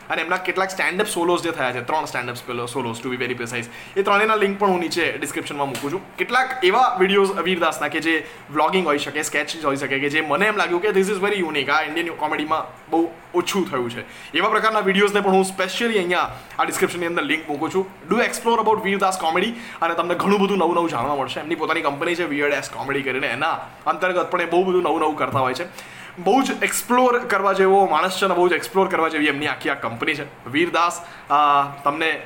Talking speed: 220 wpm